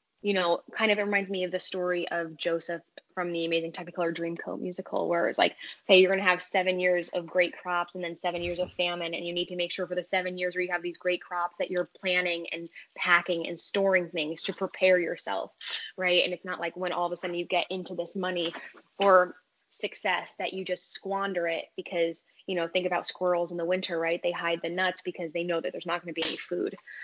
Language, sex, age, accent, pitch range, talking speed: English, female, 10-29, American, 170-190 Hz, 250 wpm